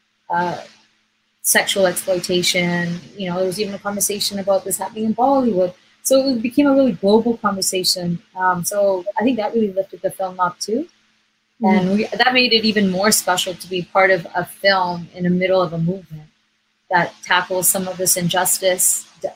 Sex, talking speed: female, 180 wpm